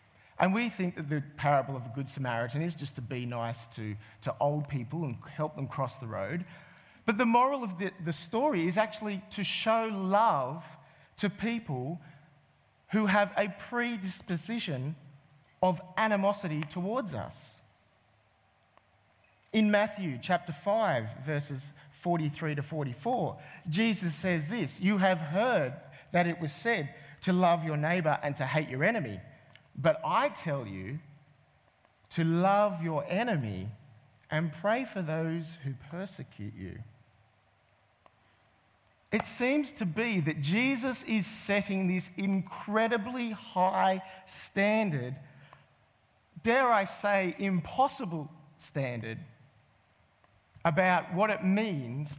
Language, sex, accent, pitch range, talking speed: English, male, Australian, 130-195 Hz, 125 wpm